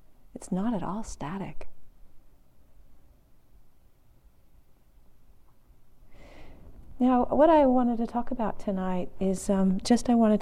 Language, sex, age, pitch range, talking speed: English, female, 40-59, 155-195 Hz, 105 wpm